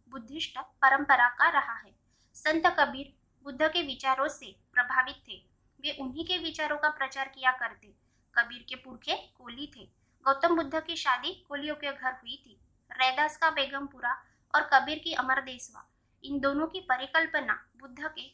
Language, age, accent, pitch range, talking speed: Hindi, 20-39, native, 255-300 Hz, 75 wpm